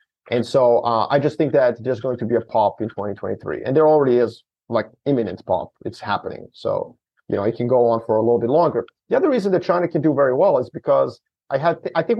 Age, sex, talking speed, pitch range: 30-49, male, 255 wpm, 120-155 Hz